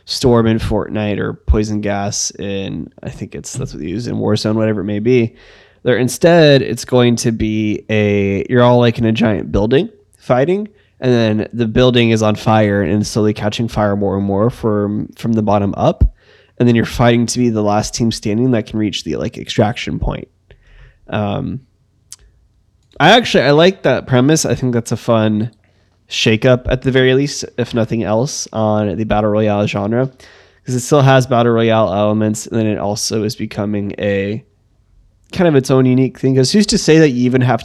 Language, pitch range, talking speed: English, 105-125 Hz, 200 wpm